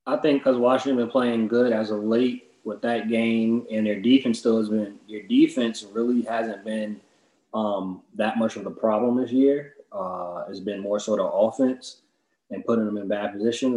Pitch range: 105-125 Hz